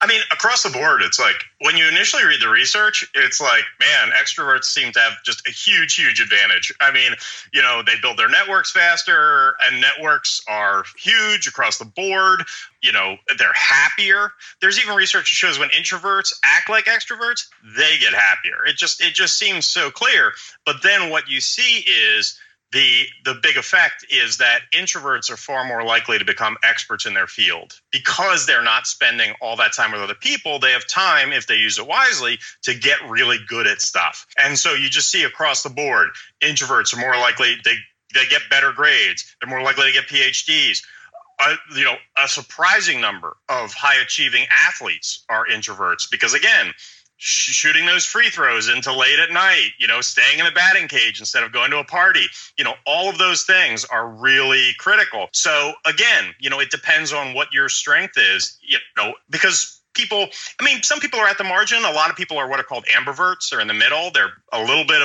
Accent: American